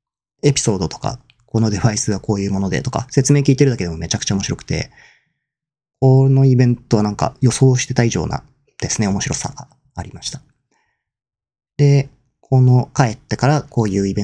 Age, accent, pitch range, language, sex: 40-59, native, 105-135 Hz, Japanese, male